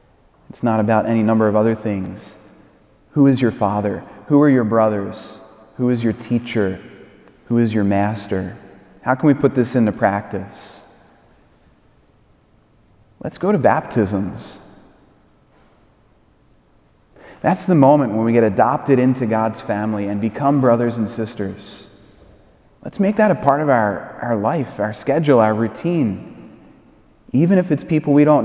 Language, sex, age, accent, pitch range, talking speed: English, male, 30-49, American, 110-145 Hz, 145 wpm